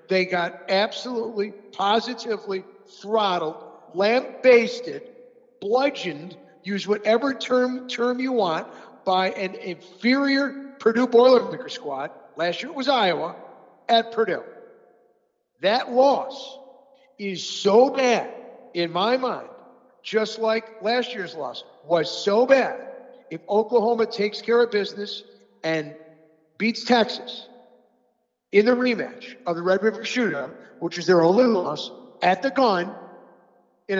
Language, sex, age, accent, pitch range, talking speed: English, male, 50-69, American, 180-250 Hz, 120 wpm